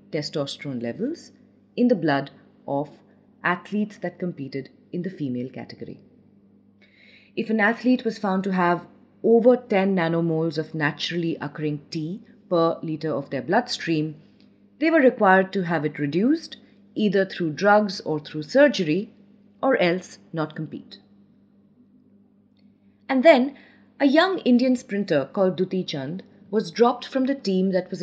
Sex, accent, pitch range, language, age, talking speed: female, Indian, 155-220 Hz, English, 30-49, 140 wpm